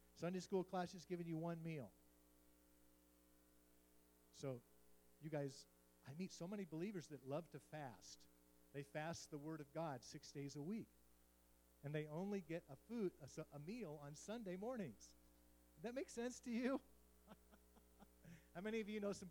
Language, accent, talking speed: English, American, 165 wpm